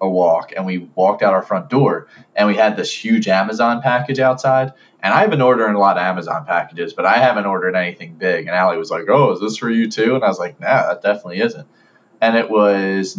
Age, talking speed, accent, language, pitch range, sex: 20-39, 240 wpm, American, English, 105-145 Hz, male